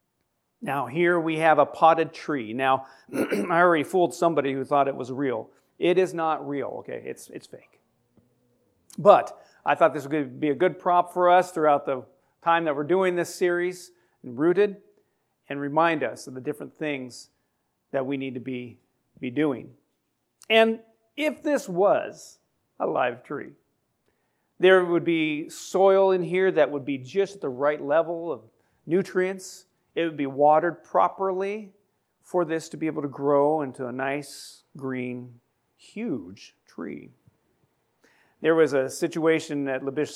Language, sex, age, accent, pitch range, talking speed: English, male, 40-59, American, 135-180 Hz, 160 wpm